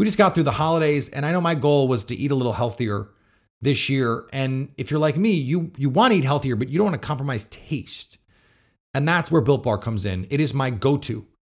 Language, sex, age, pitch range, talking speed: English, male, 30-49, 120-155 Hz, 250 wpm